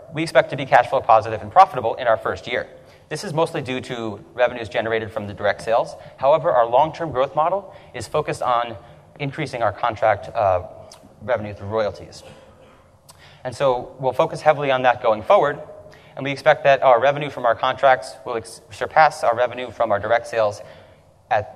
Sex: male